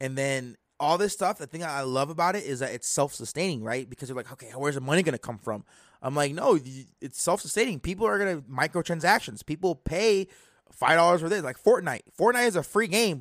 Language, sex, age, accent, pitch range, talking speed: English, male, 20-39, American, 135-185 Hz, 225 wpm